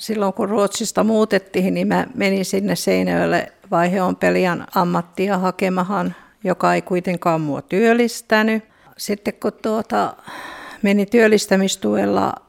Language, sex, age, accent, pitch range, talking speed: Finnish, female, 50-69, native, 175-215 Hz, 110 wpm